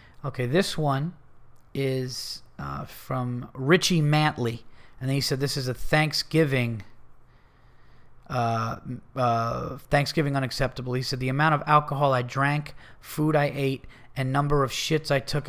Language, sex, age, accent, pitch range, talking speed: English, male, 30-49, American, 125-150 Hz, 130 wpm